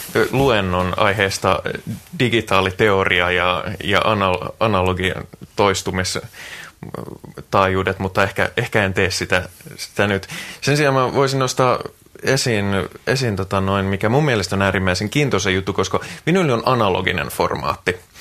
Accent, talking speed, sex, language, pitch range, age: native, 110 wpm, male, Finnish, 95-115 Hz, 20-39